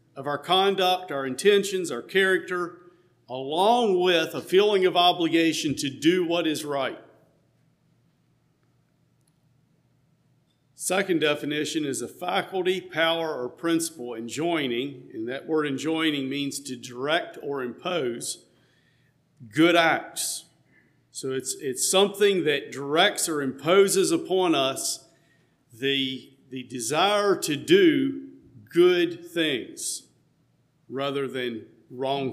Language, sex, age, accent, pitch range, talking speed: English, male, 50-69, American, 135-185 Hz, 110 wpm